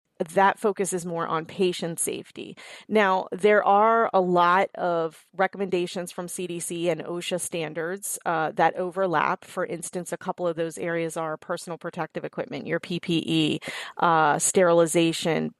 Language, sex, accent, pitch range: English, female, American, 170-195 Hz